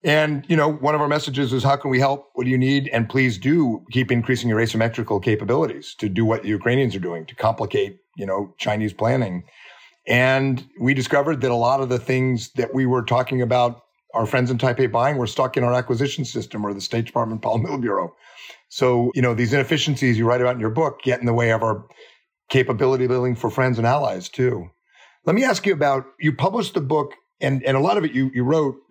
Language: English